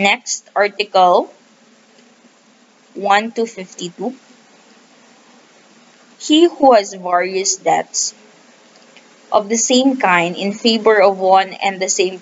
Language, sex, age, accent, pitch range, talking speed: English, female, 20-39, Filipino, 180-230 Hz, 105 wpm